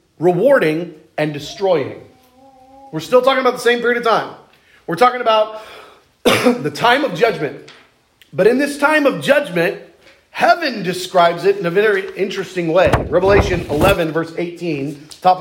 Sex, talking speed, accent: male, 150 wpm, American